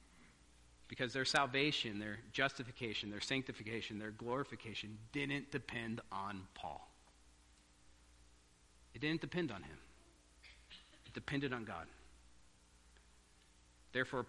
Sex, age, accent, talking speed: male, 50-69, American, 95 wpm